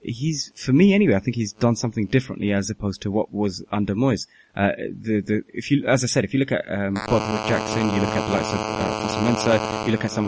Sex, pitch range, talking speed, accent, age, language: male, 100-125 Hz, 255 wpm, British, 20-39, English